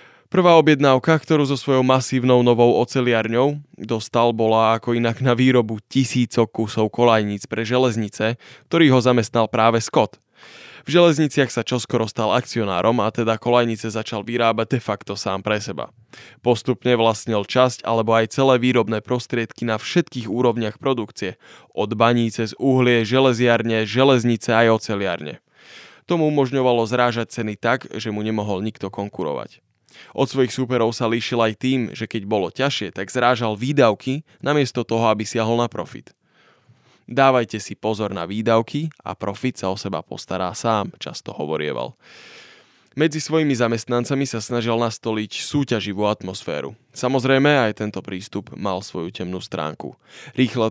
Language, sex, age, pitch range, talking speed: Slovak, male, 20-39, 110-130 Hz, 145 wpm